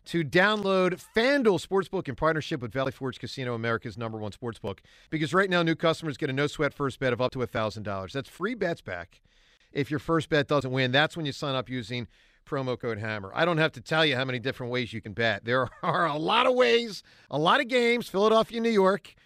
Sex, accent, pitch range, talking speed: male, American, 125-170 Hz, 225 wpm